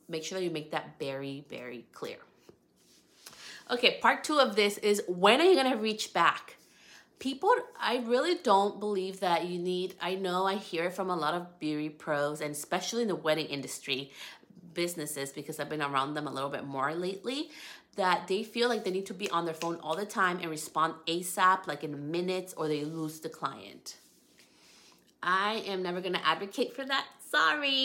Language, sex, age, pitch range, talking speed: English, female, 30-49, 160-210 Hz, 195 wpm